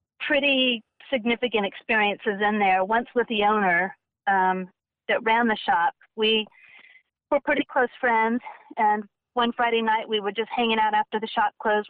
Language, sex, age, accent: English, female, 40-59, American